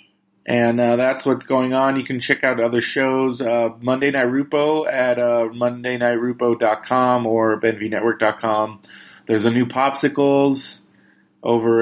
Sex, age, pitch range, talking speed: male, 30-49, 115-135 Hz, 130 wpm